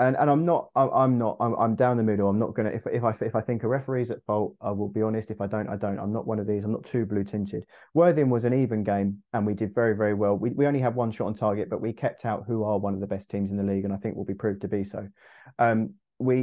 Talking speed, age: 320 wpm, 30-49